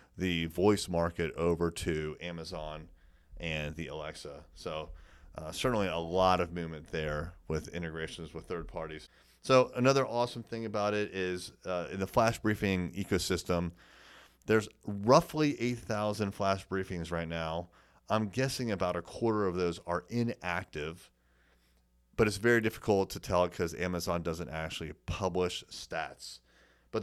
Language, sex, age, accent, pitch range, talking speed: English, male, 30-49, American, 80-105 Hz, 140 wpm